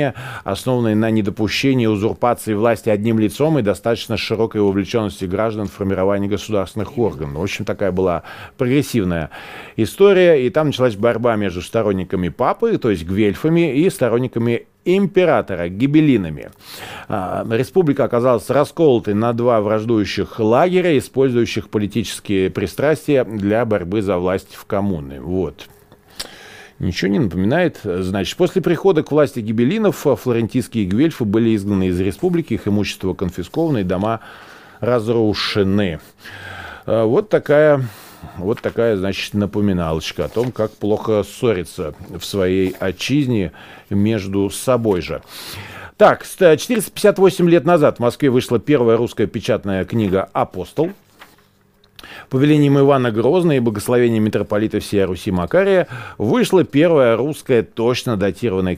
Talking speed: 120 wpm